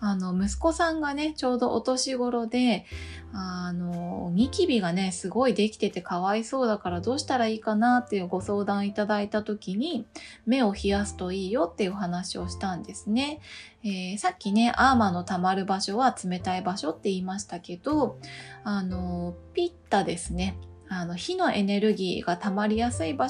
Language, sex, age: Japanese, female, 20-39